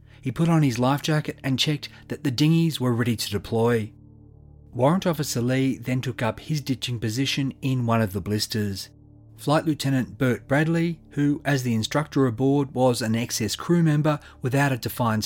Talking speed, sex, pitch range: 180 wpm, male, 115-145 Hz